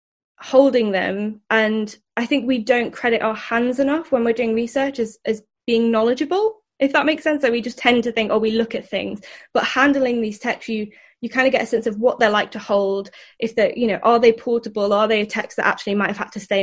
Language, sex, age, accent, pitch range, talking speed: English, female, 10-29, British, 205-245 Hz, 245 wpm